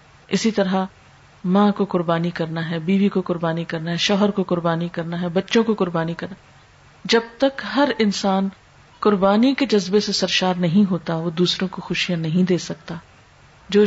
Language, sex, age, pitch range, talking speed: Urdu, female, 40-59, 175-210 Hz, 175 wpm